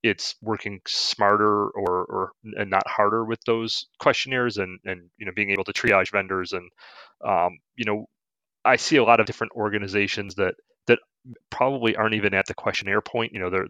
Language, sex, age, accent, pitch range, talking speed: English, male, 30-49, American, 95-115 Hz, 190 wpm